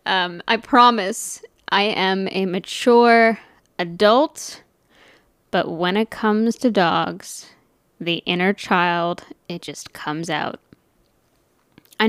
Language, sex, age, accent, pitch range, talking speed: English, female, 10-29, American, 170-215 Hz, 110 wpm